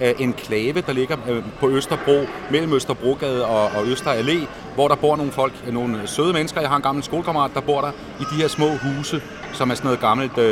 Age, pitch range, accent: 40-59, 120-145 Hz, native